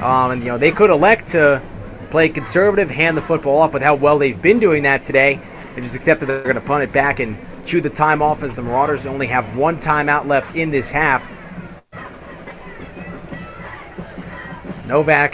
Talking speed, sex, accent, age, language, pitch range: 190 wpm, male, American, 30-49, English, 115-155 Hz